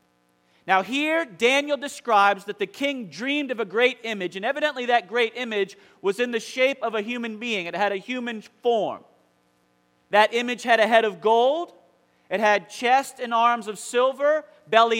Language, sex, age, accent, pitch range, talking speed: English, male, 40-59, American, 180-245 Hz, 180 wpm